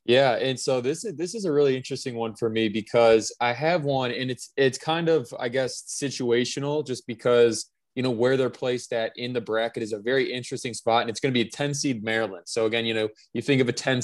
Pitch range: 115-140 Hz